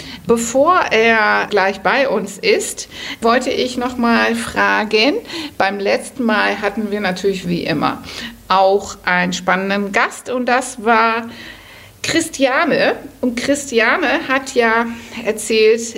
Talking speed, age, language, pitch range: 120 wpm, 50-69, German, 180-230 Hz